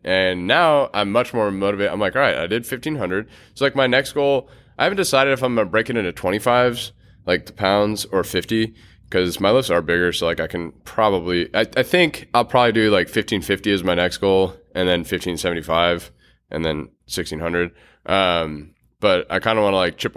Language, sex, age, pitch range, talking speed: English, male, 20-39, 85-110 Hz, 210 wpm